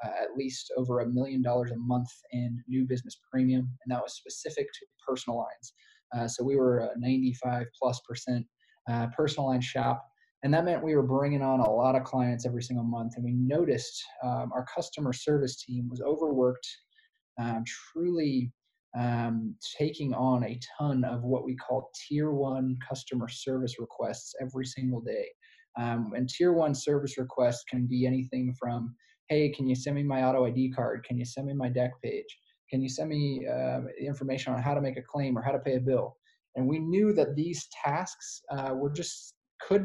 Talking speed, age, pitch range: 195 wpm, 20-39, 125-140 Hz